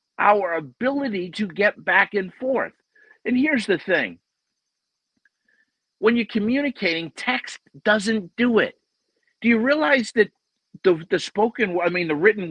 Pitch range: 180-240 Hz